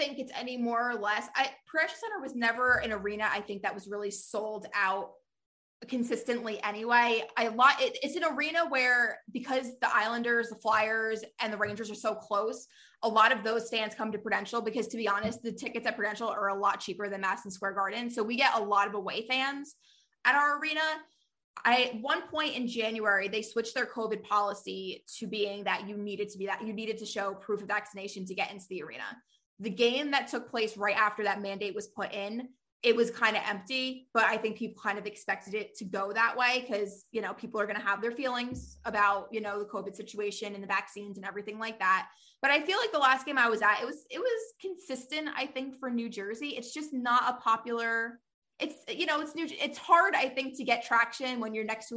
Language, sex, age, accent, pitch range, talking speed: English, female, 20-39, American, 205-250 Hz, 225 wpm